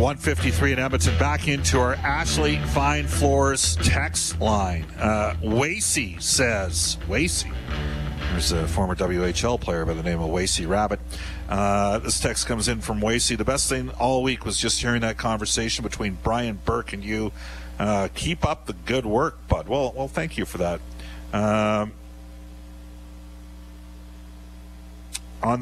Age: 50-69